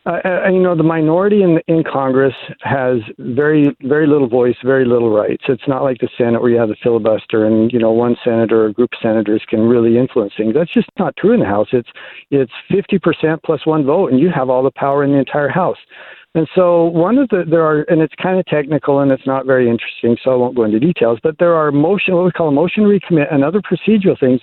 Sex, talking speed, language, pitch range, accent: male, 250 wpm, English, 130-175 Hz, American